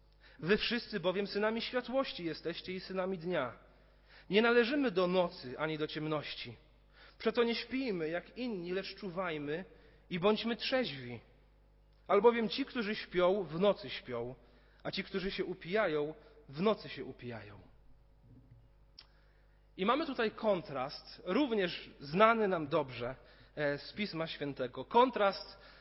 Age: 40-59